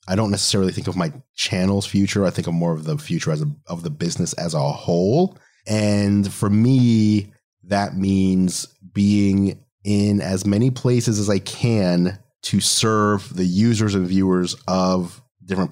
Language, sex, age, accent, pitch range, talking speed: English, male, 30-49, American, 90-120 Hz, 160 wpm